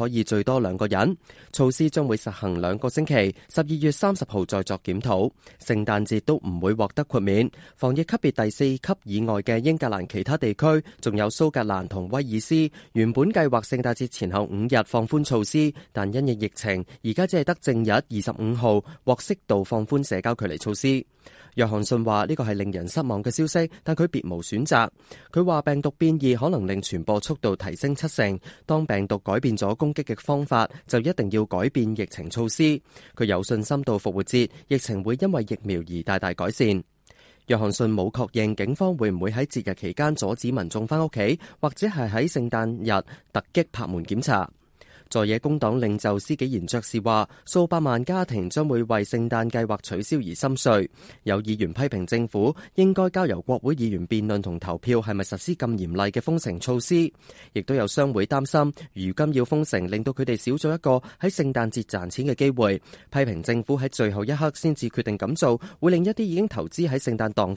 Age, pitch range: 20-39, 105-145 Hz